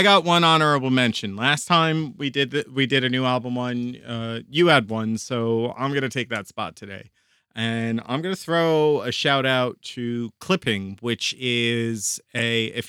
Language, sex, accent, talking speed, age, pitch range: English, male, American, 190 wpm, 30-49, 115-145 Hz